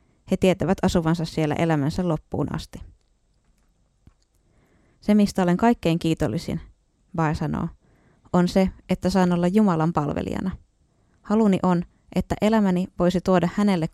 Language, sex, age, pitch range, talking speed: Finnish, female, 20-39, 160-190 Hz, 120 wpm